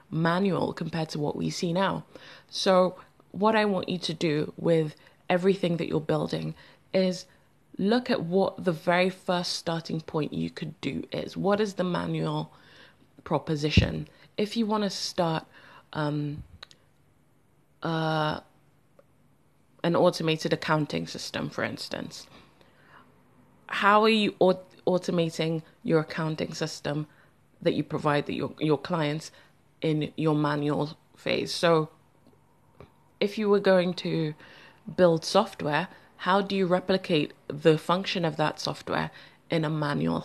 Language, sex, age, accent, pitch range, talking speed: English, female, 20-39, British, 150-185 Hz, 135 wpm